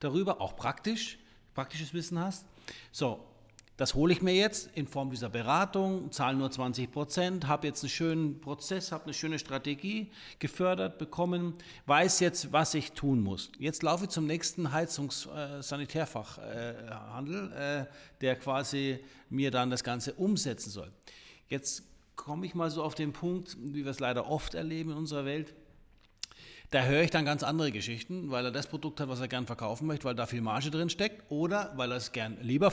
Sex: male